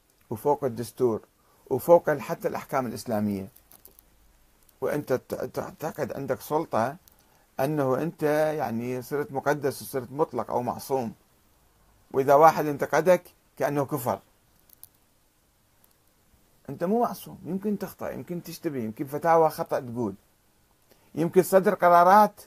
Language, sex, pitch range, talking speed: Arabic, male, 130-180 Hz, 100 wpm